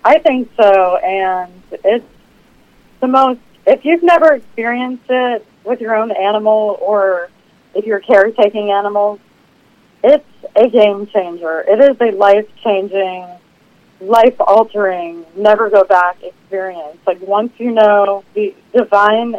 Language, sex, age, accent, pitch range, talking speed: English, female, 30-49, American, 195-225 Hz, 135 wpm